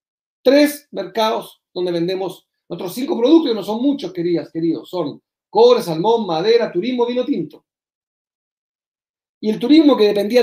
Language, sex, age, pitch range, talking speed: Spanish, male, 40-59, 180-245 Hz, 145 wpm